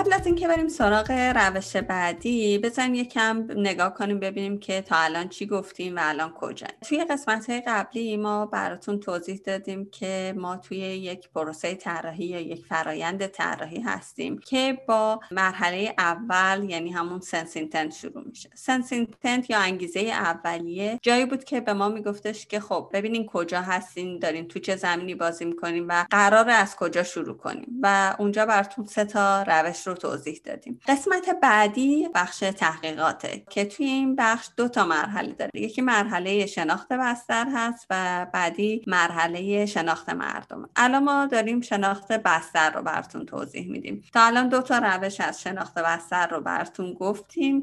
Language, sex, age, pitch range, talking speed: Persian, female, 30-49, 175-230 Hz, 160 wpm